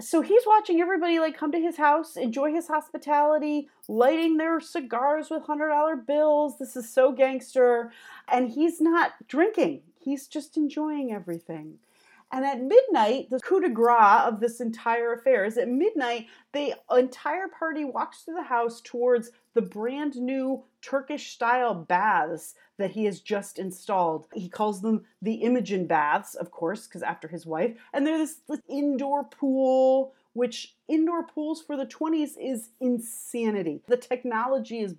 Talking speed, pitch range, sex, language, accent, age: 155 wpm, 220-295 Hz, female, English, American, 30-49